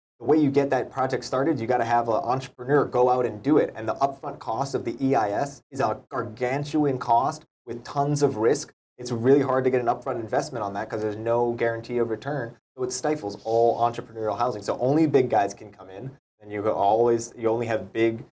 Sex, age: male, 20-39